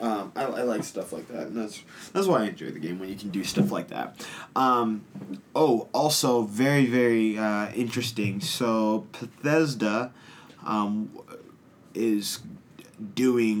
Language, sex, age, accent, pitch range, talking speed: English, male, 20-39, American, 95-120 Hz, 150 wpm